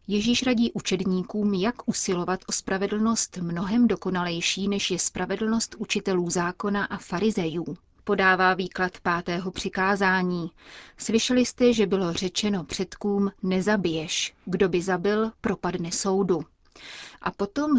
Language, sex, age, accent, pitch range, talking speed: Czech, female, 30-49, native, 180-210 Hz, 115 wpm